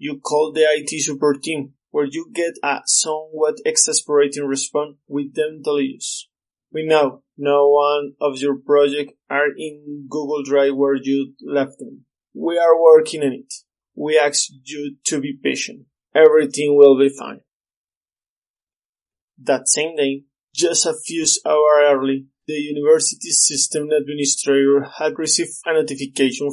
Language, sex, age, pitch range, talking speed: English, male, 20-39, 140-155 Hz, 140 wpm